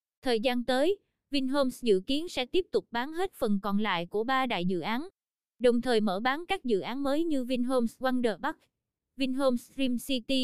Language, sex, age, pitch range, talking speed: Vietnamese, female, 20-39, 225-275 Hz, 195 wpm